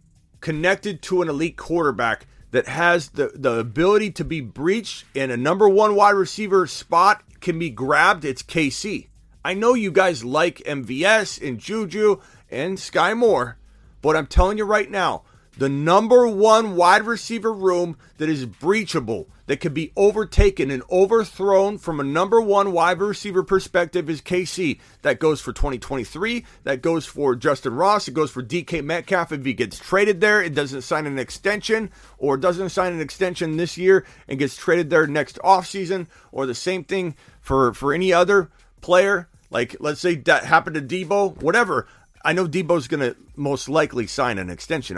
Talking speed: 175 wpm